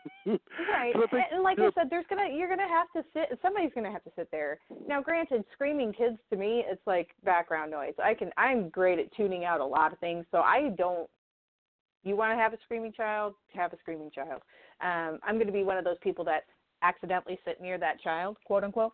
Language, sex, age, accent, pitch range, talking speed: English, female, 30-49, American, 170-235 Hz, 220 wpm